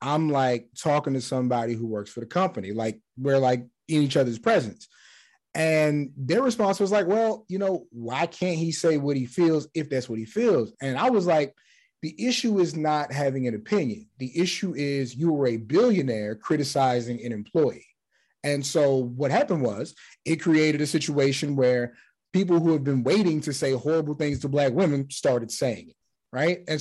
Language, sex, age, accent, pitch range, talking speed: English, male, 30-49, American, 125-165 Hz, 190 wpm